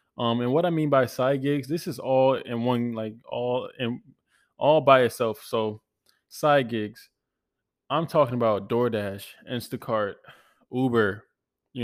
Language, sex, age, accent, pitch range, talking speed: English, male, 20-39, American, 110-125 Hz, 145 wpm